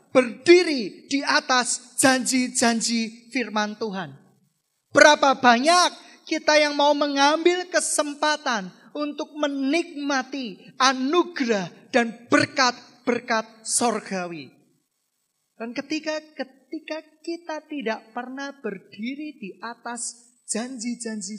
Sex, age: male, 30-49